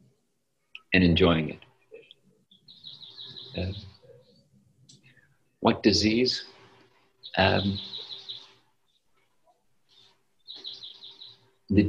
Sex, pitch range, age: male, 85-105 Hz, 50-69